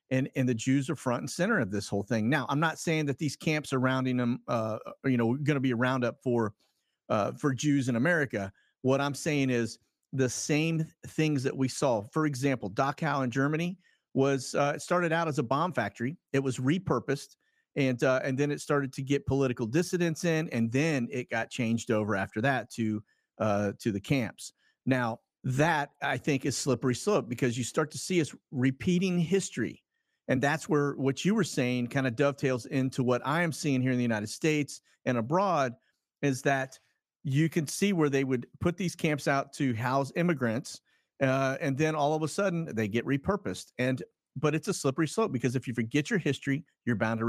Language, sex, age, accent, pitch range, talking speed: English, male, 40-59, American, 125-155 Hz, 210 wpm